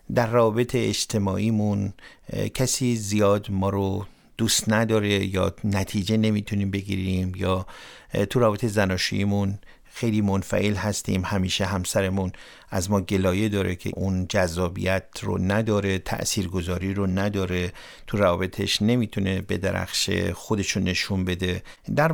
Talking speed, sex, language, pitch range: 120 wpm, male, Persian, 95-115 Hz